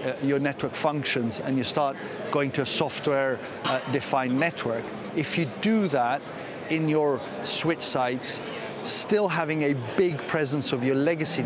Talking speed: 150 wpm